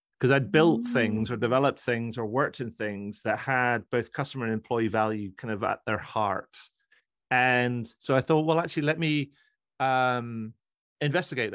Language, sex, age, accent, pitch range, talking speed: English, male, 30-49, British, 115-135 Hz, 170 wpm